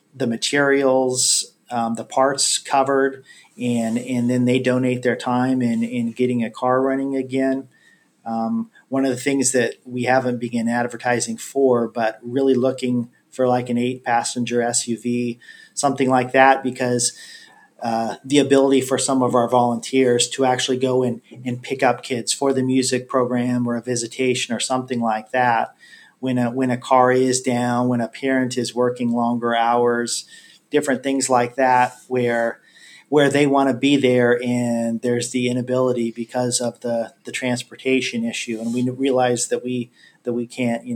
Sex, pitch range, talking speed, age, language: male, 120-130 Hz, 165 wpm, 40-59, English